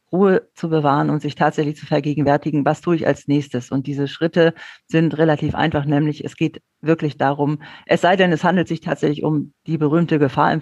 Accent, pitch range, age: German, 140-160 Hz, 50-69